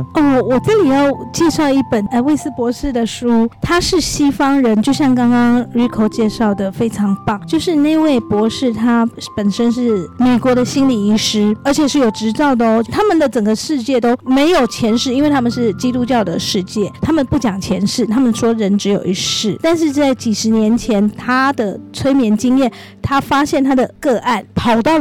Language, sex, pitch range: Chinese, female, 220-280 Hz